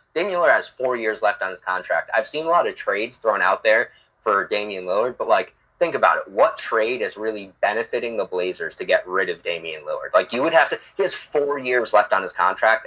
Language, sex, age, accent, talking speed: English, male, 20-39, American, 240 wpm